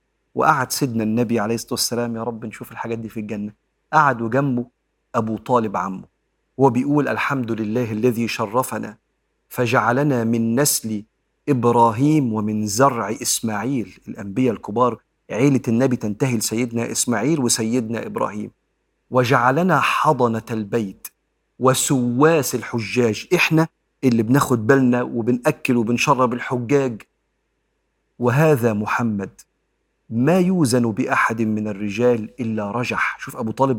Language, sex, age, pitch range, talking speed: Arabic, male, 40-59, 110-135 Hz, 110 wpm